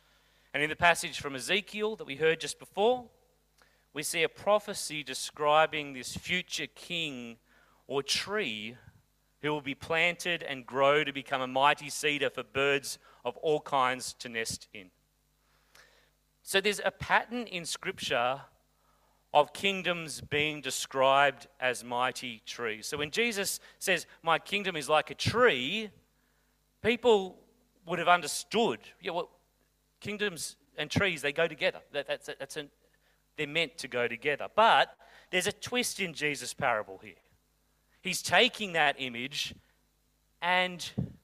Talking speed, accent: 145 wpm, Australian